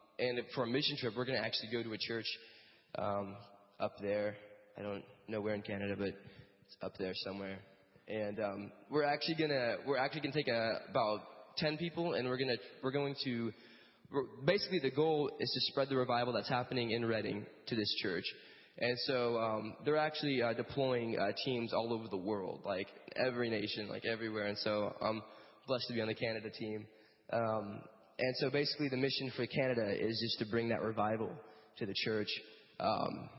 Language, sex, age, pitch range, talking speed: English, male, 20-39, 105-130 Hz, 200 wpm